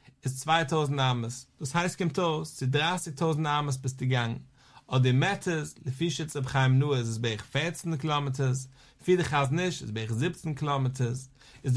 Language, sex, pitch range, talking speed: English, male, 130-170 Hz, 50 wpm